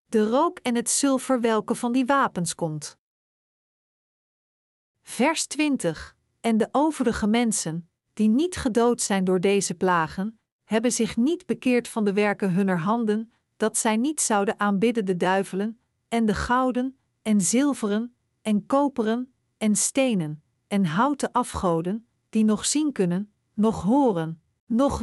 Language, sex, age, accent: Dutch, female, 50-69, Dutch